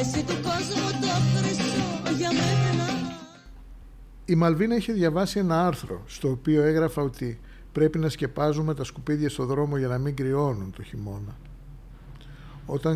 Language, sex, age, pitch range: Greek, male, 60-79, 125-155 Hz